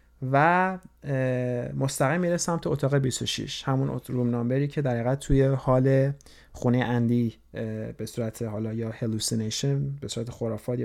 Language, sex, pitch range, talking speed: Persian, male, 115-140 Hz, 135 wpm